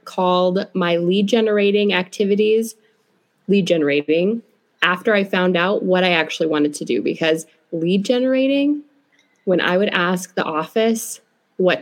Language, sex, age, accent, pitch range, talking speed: English, female, 20-39, American, 180-225 Hz, 135 wpm